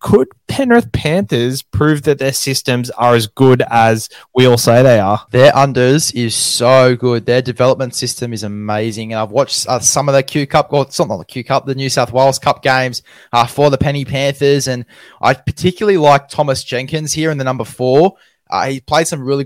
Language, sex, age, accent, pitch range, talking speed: English, male, 20-39, Australian, 120-140 Hz, 210 wpm